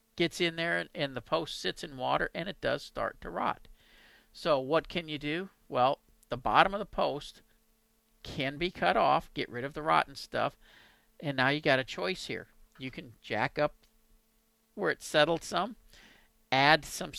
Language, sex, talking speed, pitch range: English, male, 185 wpm, 120-160 Hz